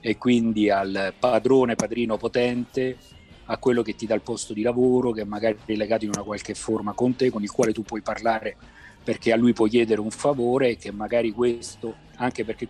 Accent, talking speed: native, 215 wpm